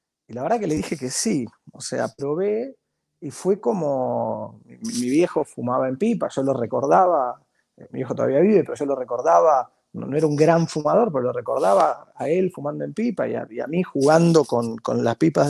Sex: male